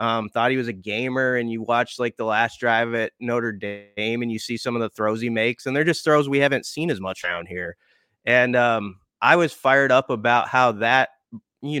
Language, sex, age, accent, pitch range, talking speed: English, male, 20-39, American, 110-130 Hz, 235 wpm